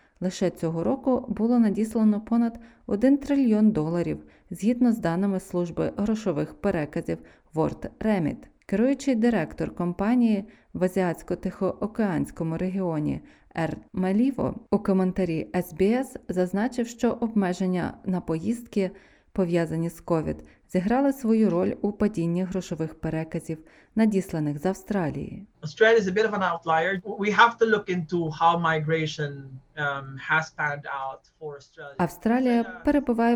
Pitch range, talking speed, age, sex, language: 170-225 Hz, 85 wpm, 20-39, female, Ukrainian